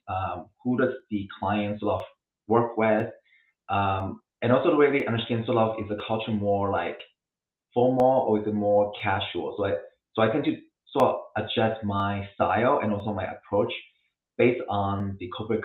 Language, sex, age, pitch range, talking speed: English, male, 30-49, 105-120 Hz, 180 wpm